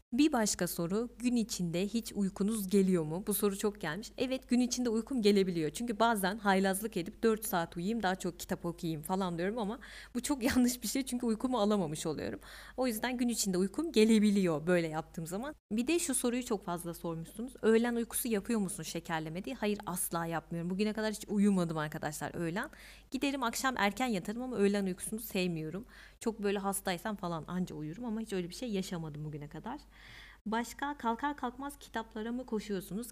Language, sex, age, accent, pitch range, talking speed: Turkish, female, 30-49, native, 180-235 Hz, 180 wpm